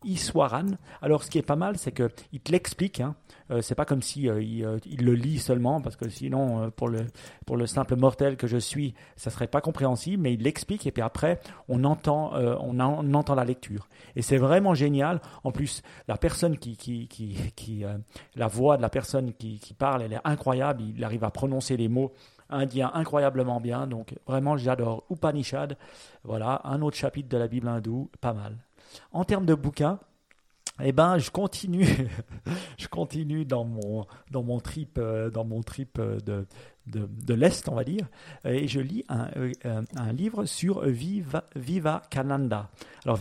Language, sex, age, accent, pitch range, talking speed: French, male, 40-59, French, 120-150 Hz, 190 wpm